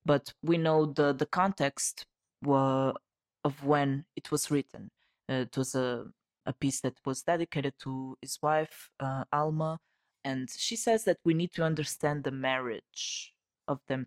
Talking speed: 160 wpm